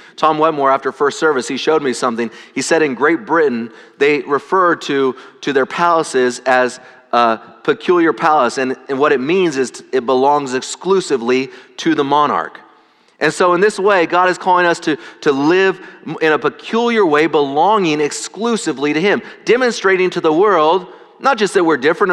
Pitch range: 120-165 Hz